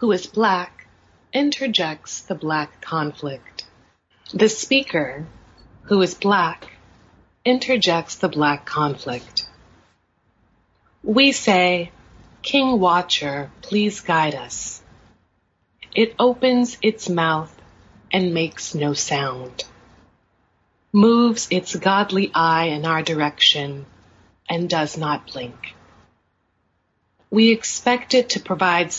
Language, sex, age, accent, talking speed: English, female, 30-49, American, 95 wpm